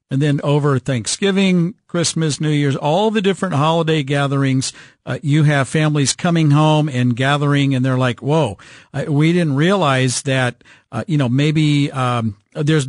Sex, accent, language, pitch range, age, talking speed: male, American, English, 135-160 Hz, 50-69, 160 wpm